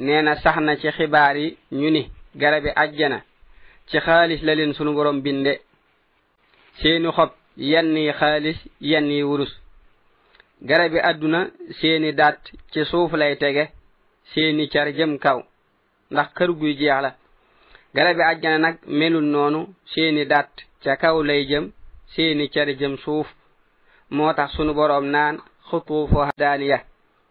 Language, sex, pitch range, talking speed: French, male, 145-160 Hz, 120 wpm